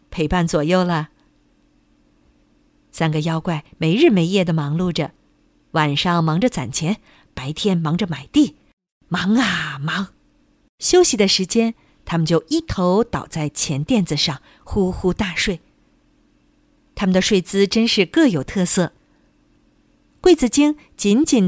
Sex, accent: female, native